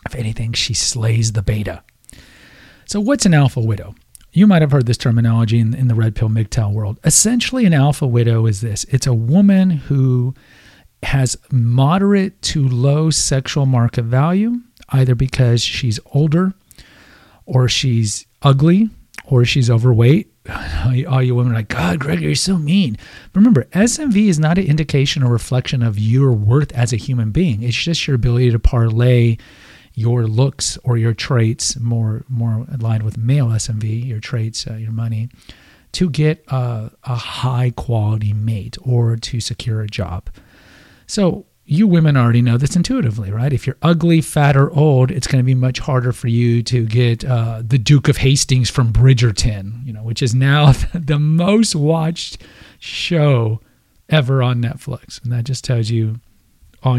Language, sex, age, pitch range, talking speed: English, male, 40-59, 115-145 Hz, 165 wpm